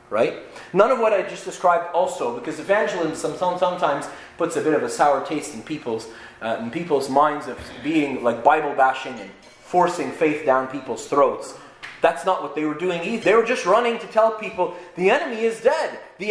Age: 30-49